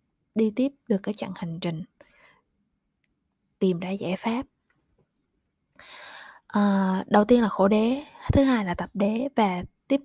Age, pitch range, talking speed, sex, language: 20-39, 190-255 Hz, 145 wpm, female, Vietnamese